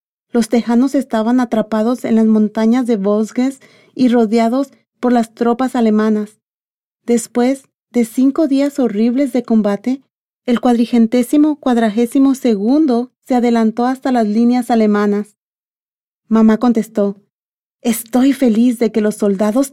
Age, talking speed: 40-59, 120 wpm